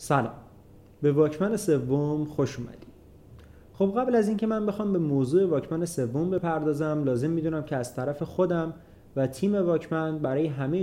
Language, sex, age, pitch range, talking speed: Persian, male, 30-49, 140-170 Hz, 150 wpm